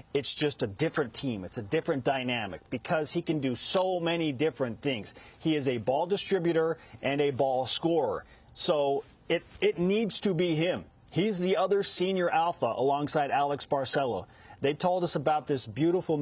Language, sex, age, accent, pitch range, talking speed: English, male, 40-59, American, 135-175 Hz, 175 wpm